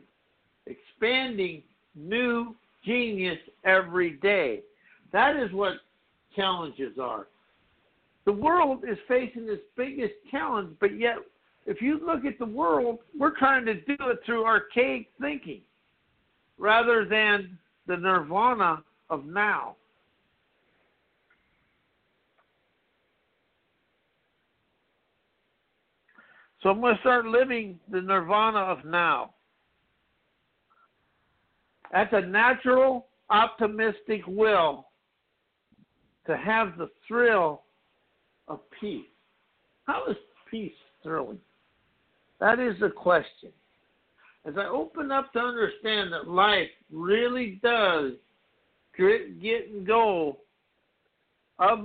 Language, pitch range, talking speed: English, 185-245 Hz, 95 wpm